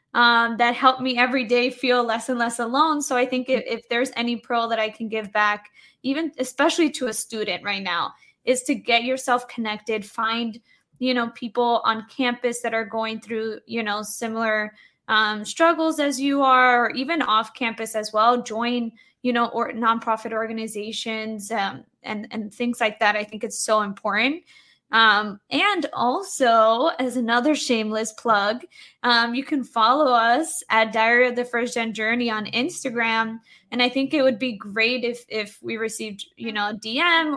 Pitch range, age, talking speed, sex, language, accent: 220-255 Hz, 20-39, 180 wpm, female, English, American